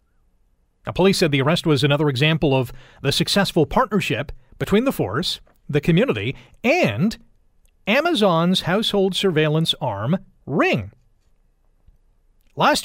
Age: 40-59